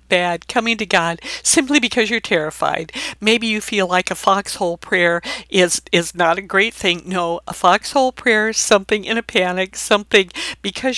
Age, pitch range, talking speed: 60-79, 170-220 Hz, 170 wpm